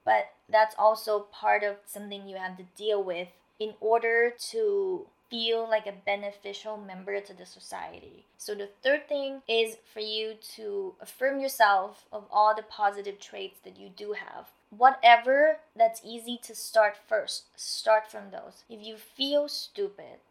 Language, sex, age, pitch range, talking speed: English, female, 20-39, 205-260 Hz, 160 wpm